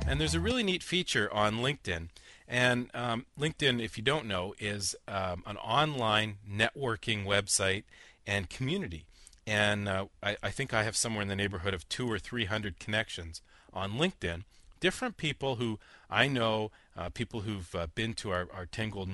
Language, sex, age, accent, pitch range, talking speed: English, male, 40-59, American, 95-135 Hz, 175 wpm